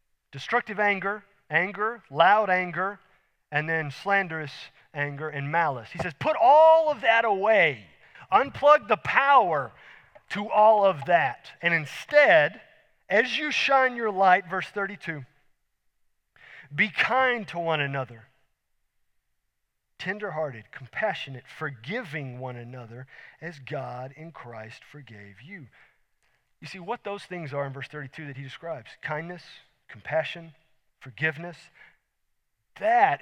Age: 40-59